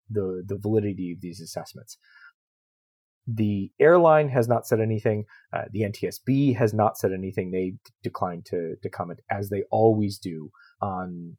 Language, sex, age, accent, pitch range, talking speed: English, male, 30-49, American, 100-130 Hz, 160 wpm